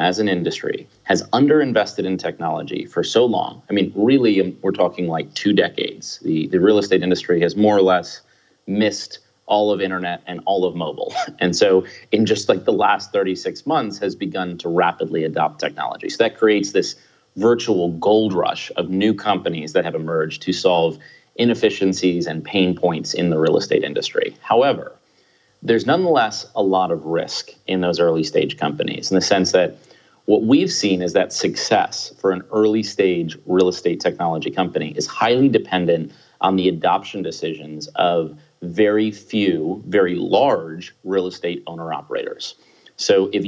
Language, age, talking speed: French, 30-49, 170 wpm